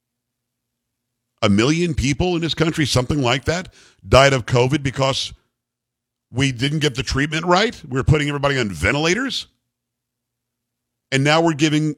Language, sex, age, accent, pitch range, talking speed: English, male, 50-69, American, 120-150 Hz, 145 wpm